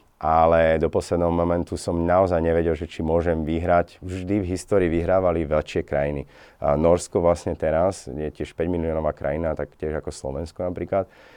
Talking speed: 165 wpm